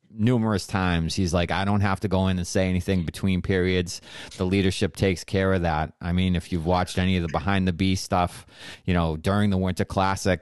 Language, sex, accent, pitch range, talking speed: English, male, American, 85-100 Hz, 225 wpm